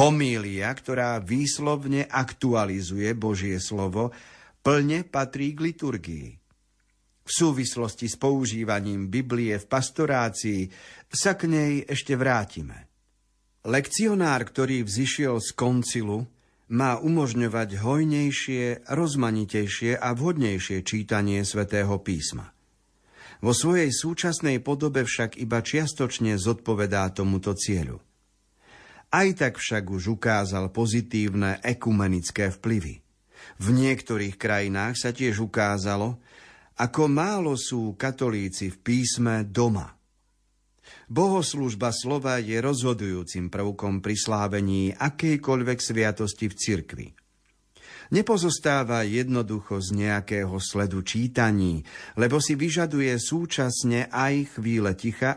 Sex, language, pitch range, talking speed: male, Slovak, 100-135 Hz, 100 wpm